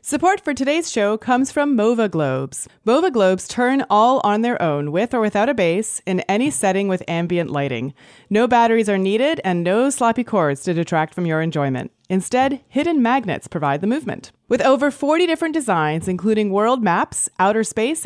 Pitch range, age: 170-235 Hz, 30-49